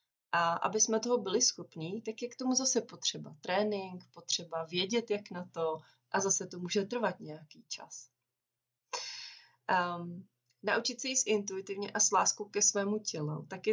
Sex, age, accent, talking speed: female, 30-49, native, 160 wpm